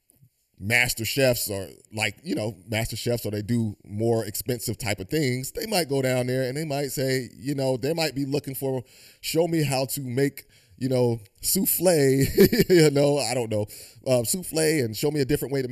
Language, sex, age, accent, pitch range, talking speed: English, male, 30-49, American, 110-140 Hz, 205 wpm